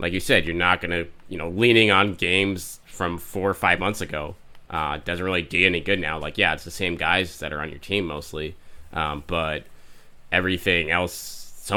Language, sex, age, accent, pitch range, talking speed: English, male, 20-39, American, 80-95 Hz, 215 wpm